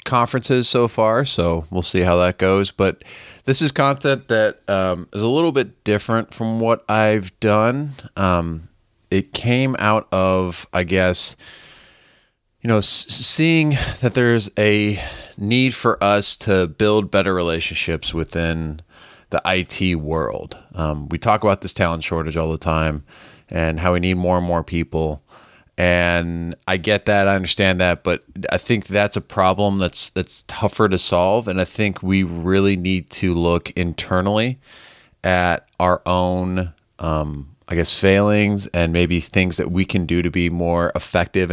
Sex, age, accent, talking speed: male, 30-49, American, 160 wpm